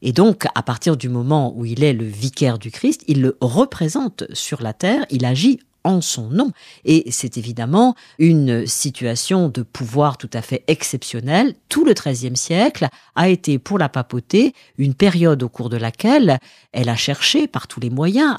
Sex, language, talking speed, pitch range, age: female, French, 185 wpm, 130-195 Hz, 50-69